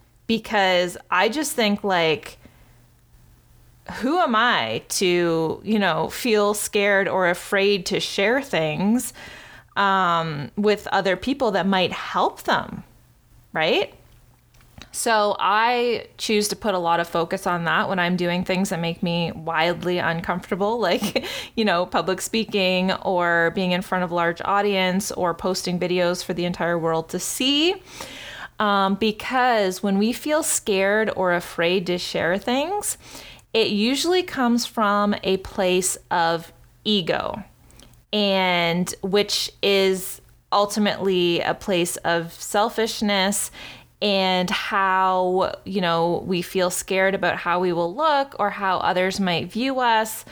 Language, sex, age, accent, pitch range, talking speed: English, female, 20-39, American, 175-205 Hz, 135 wpm